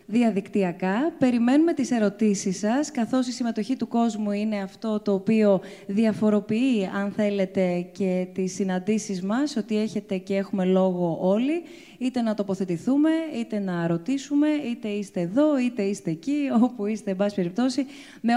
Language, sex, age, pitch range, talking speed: Greek, female, 20-39, 195-240 Hz, 145 wpm